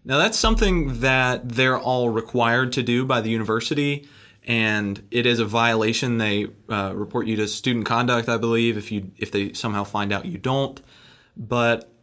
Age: 20-39